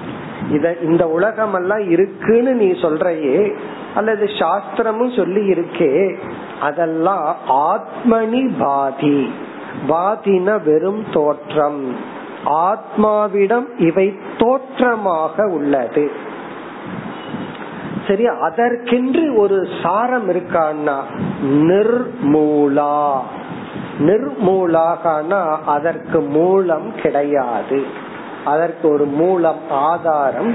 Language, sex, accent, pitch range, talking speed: Tamil, male, native, 150-210 Hz, 60 wpm